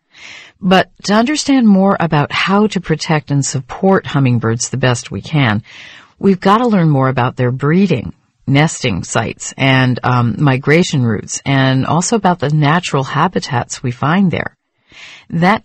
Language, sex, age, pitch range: Chinese, female, 50-69, 120-160 Hz